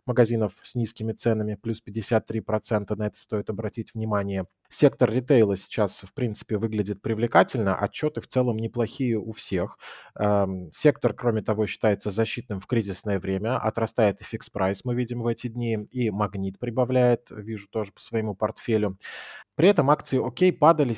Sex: male